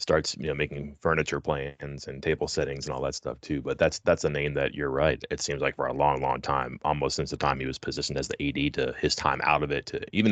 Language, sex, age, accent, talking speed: English, male, 30-49, American, 280 wpm